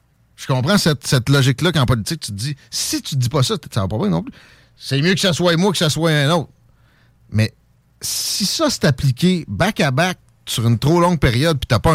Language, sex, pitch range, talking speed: French, male, 115-165 Hz, 250 wpm